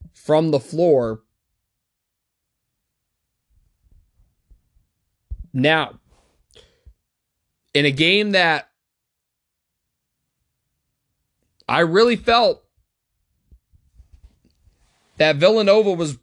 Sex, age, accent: male, 20-39, American